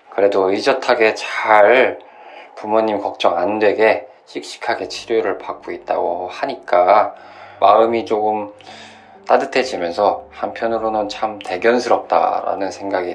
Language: Korean